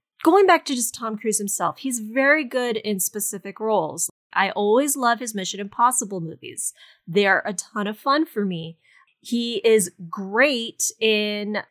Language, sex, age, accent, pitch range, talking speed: English, female, 20-39, American, 200-265 Hz, 160 wpm